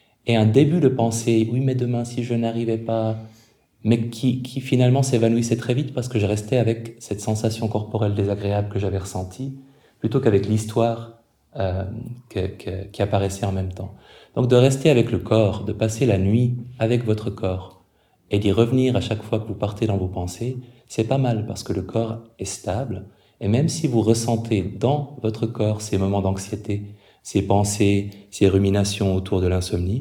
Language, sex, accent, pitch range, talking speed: French, male, French, 100-120 Hz, 190 wpm